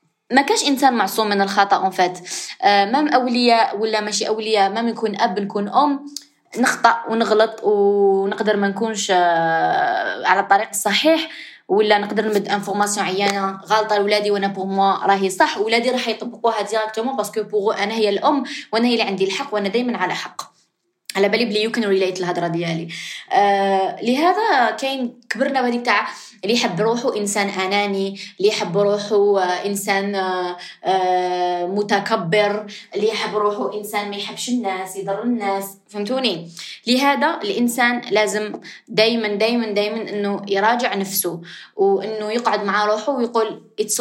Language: Arabic